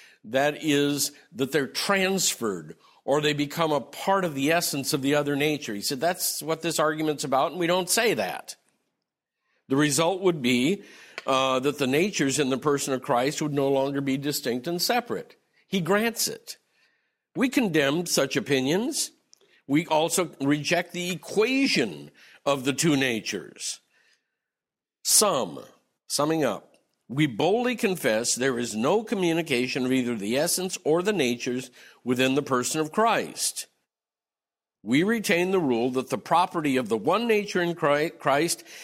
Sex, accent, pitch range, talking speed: male, American, 135-180 Hz, 155 wpm